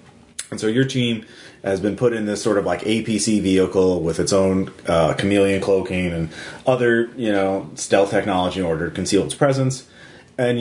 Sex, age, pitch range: male, 30-49, 95-120 Hz